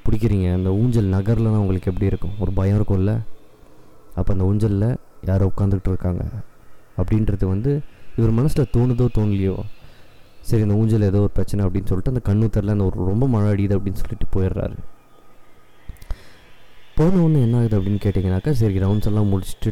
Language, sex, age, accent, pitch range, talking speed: Tamil, male, 20-39, native, 95-120 Hz, 155 wpm